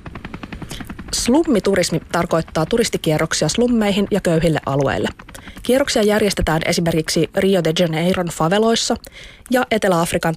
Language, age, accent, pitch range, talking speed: Finnish, 20-39, native, 170-225 Hz, 95 wpm